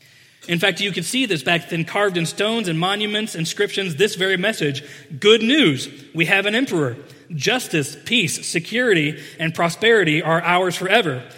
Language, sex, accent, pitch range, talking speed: English, male, American, 135-180 Hz, 165 wpm